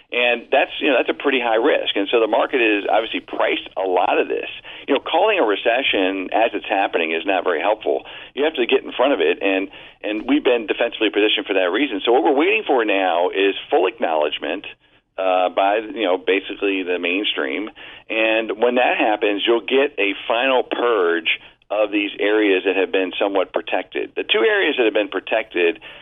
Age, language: 50-69, English